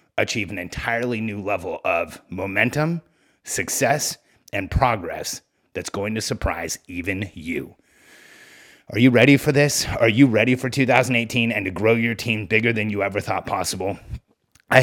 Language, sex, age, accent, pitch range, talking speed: English, male, 30-49, American, 105-135 Hz, 155 wpm